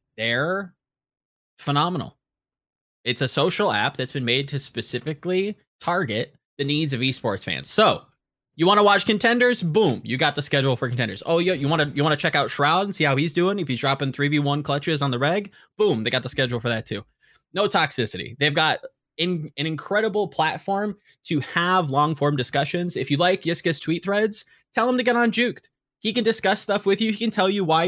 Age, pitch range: 20-39, 125-175 Hz